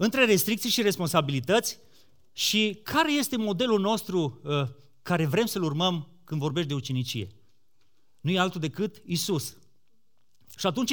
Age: 30-49